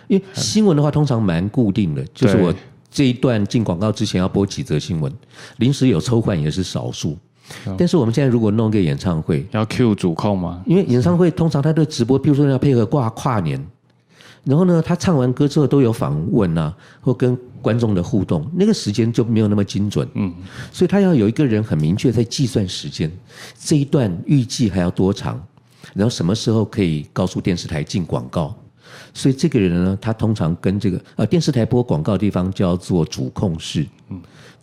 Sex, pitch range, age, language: male, 95-135 Hz, 50-69, Chinese